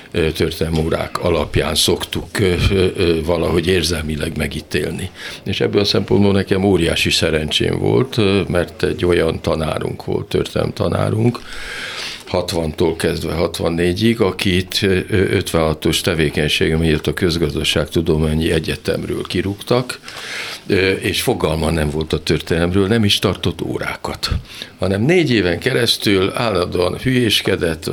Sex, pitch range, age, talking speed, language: male, 80-110 Hz, 50-69, 105 wpm, Hungarian